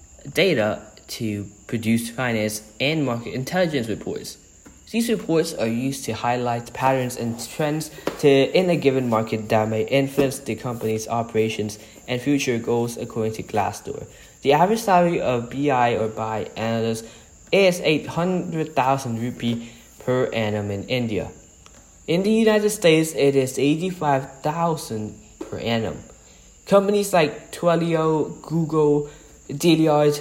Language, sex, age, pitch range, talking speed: English, male, 10-29, 115-155 Hz, 135 wpm